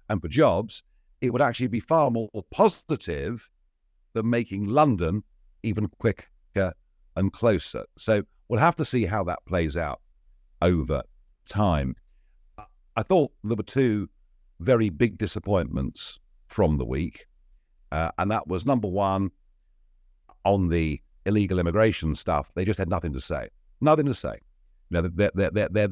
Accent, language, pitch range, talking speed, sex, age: British, English, 75-120 Hz, 145 wpm, male, 50-69